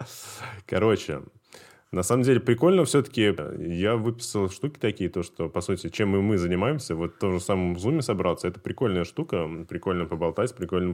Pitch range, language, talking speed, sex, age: 90-115 Hz, Russian, 185 wpm, male, 20-39